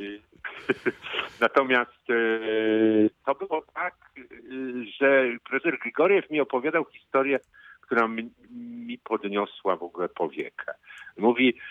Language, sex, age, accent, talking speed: Polish, male, 50-69, native, 85 wpm